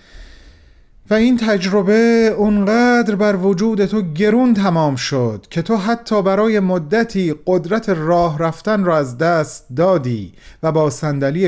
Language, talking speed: Persian, 130 wpm